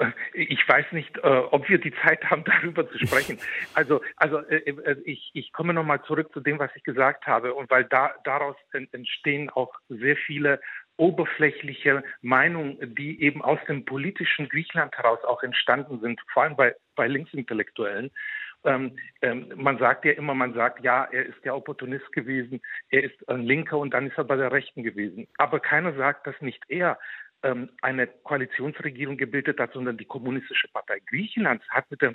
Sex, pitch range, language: male, 130-165 Hz, German